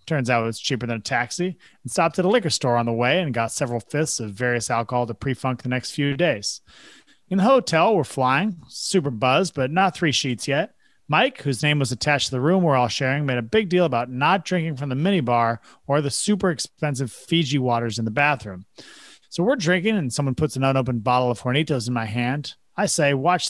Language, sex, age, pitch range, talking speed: English, male, 30-49, 120-165 Hz, 230 wpm